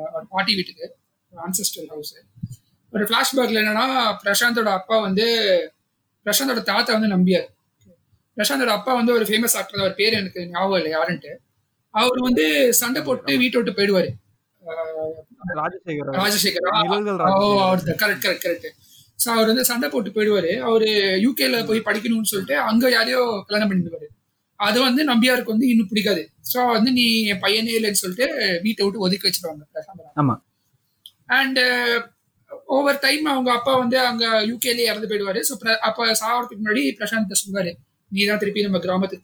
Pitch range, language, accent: 175-230 Hz, Tamil, native